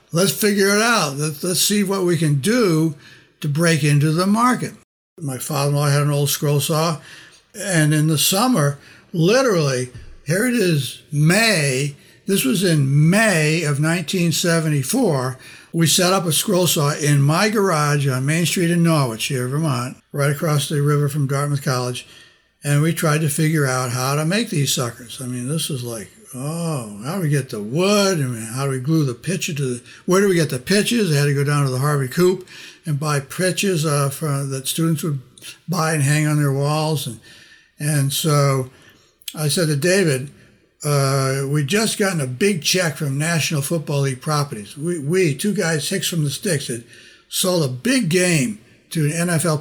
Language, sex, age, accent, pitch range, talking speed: English, male, 60-79, American, 140-175 Hz, 190 wpm